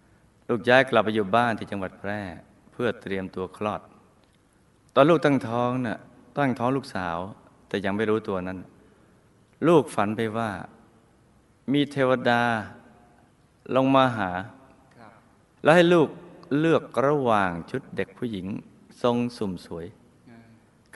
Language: Thai